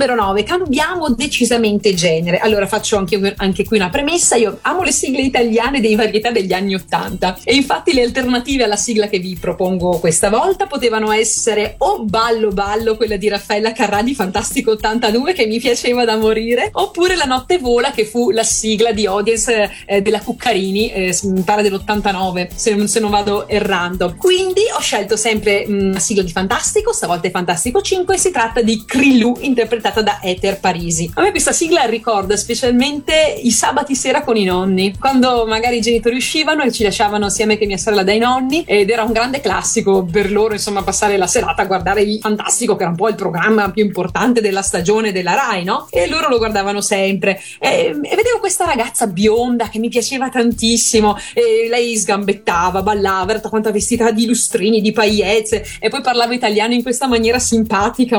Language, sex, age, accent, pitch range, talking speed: Italian, female, 30-49, native, 205-245 Hz, 190 wpm